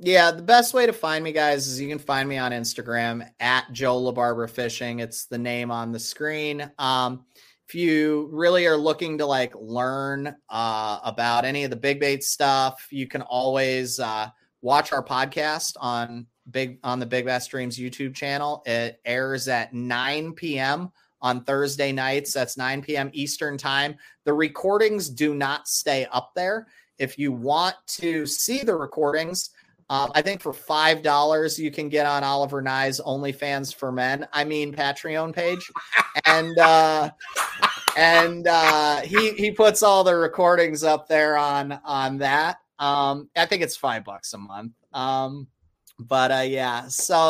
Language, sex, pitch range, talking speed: English, male, 125-150 Hz, 165 wpm